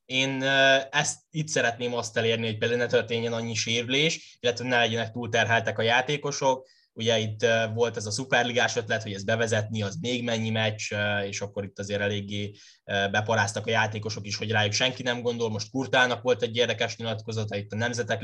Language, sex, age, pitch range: Hungarian, male, 10-29, 105-120 Hz